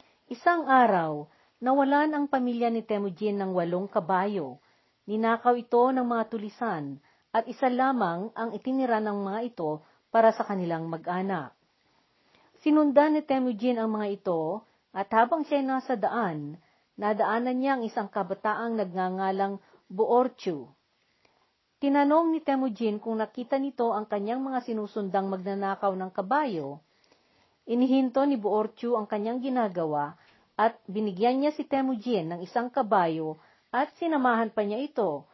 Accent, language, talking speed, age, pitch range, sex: native, Filipino, 130 wpm, 50-69, 195-255 Hz, female